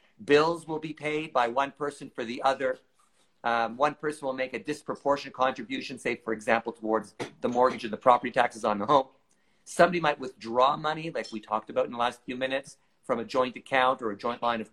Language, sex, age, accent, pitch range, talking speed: English, male, 50-69, American, 130-165 Hz, 215 wpm